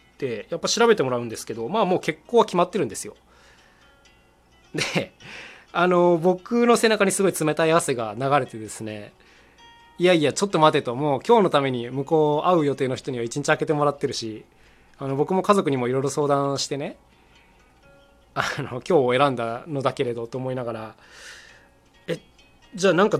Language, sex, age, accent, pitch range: Japanese, male, 20-39, native, 120-180 Hz